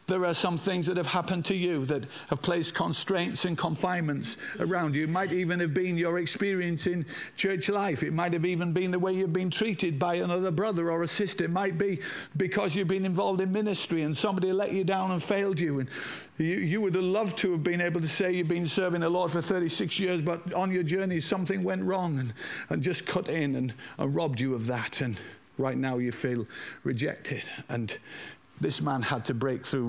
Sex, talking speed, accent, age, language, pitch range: male, 225 wpm, British, 50-69, English, 130-180 Hz